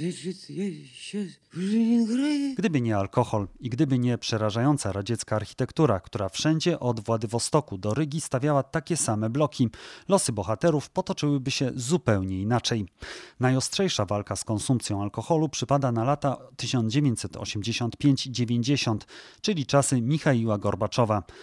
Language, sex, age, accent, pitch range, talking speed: Polish, male, 30-49, native, 110-145 Hz, 105 wpm